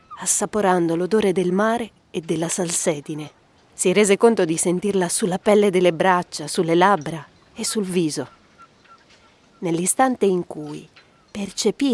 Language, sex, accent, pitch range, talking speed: Italian, female, native, 180-230 Hz, 125 wpm